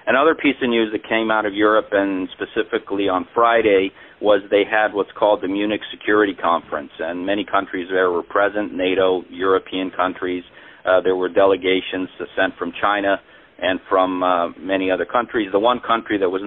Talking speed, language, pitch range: 180 wpm, English, 95-110 Hz